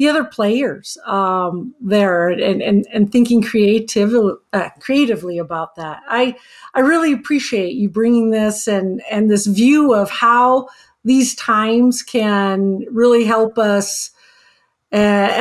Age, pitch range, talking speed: 50-69, 205-250 Hz, 130 wpm